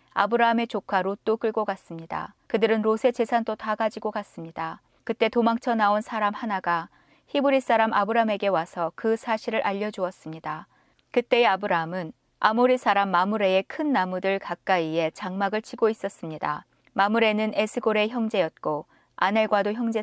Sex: female